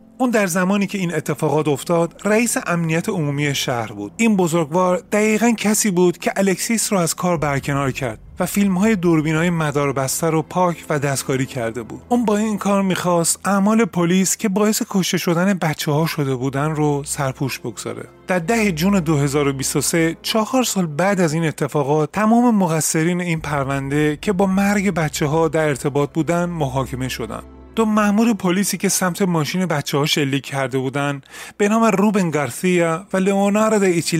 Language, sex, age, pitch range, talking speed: Persian, male, 30-49, 150-205 Hz, 165 wpm